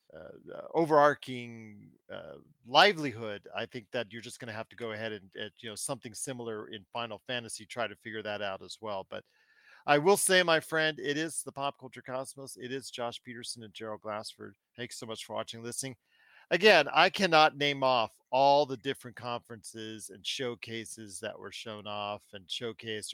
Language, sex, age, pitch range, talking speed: English, male, 40-59, 120-170 Hz, 190 wpm